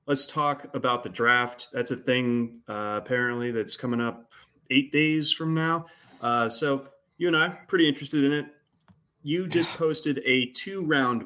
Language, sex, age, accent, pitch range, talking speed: English, male, 30-49, American, 110-150 Hz, 165 wpm